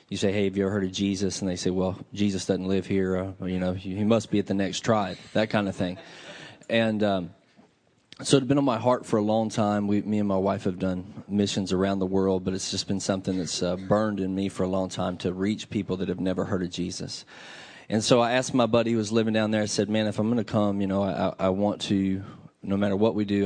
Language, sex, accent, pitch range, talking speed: English, male, American, 95-105 Hz, 280 wpm